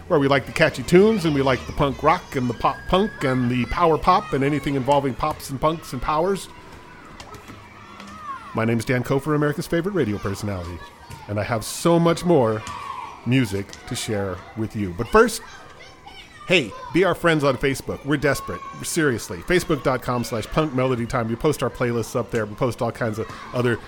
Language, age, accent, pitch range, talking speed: English, 40-59, American, 115-150 Hz, 185 wpm